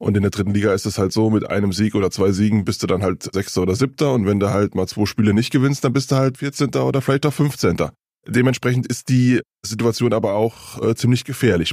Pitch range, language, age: 100-125 Hz, German, 20-39